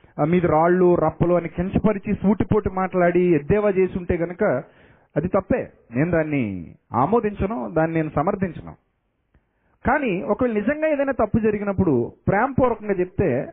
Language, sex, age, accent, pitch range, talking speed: Telugu, male, 30-49, native, 145-205 Hz, 120 wpm